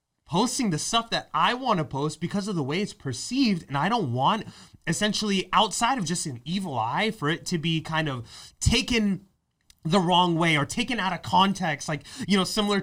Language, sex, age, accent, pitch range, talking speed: English, male, 30-49, American, 145-205 Hz, 205 wpm